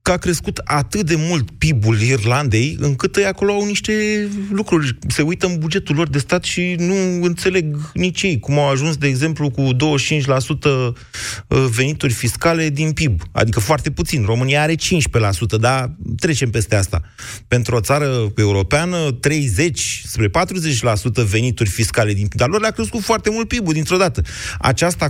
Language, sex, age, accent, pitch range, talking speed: Romanian, male, 30-49, native, 115-170 Hz, 160 wpm